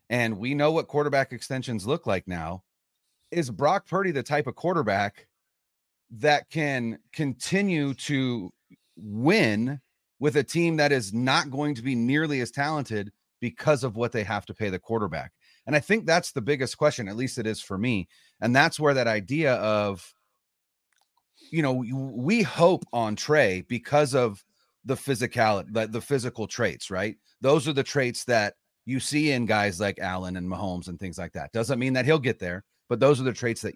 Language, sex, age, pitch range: English, male, 30-49, 110-145 Hz